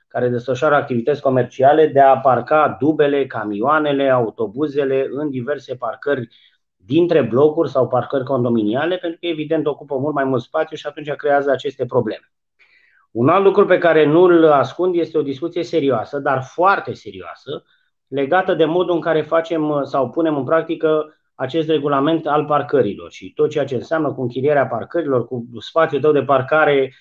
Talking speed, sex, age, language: 160 wpm, male, 30-49, Romanian